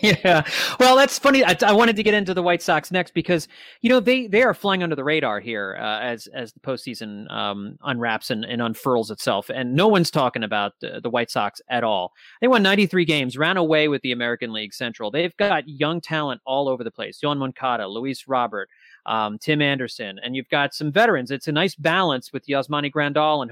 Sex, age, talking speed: male, 30-49, 220 wpm